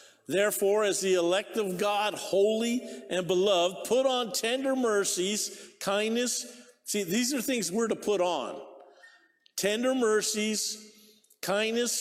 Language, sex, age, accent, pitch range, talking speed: English, male, 50-69, American, 190-245 Hz, 125 wpm